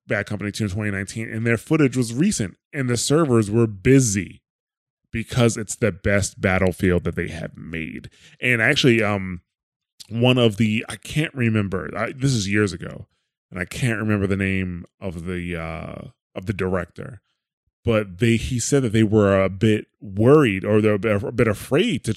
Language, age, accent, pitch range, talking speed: English, 20-39, American, 100-130 Hz, 175 wpm